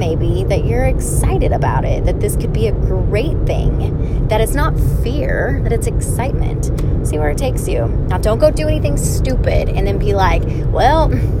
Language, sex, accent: English, female, American